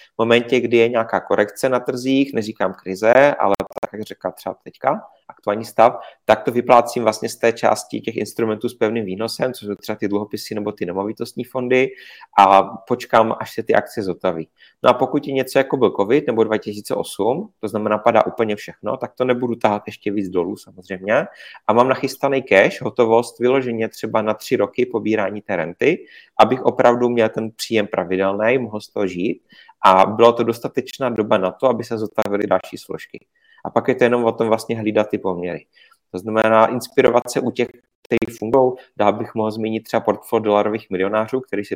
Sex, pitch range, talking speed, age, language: male, 105-120 Hz, 190 wpm, 30-49, Czech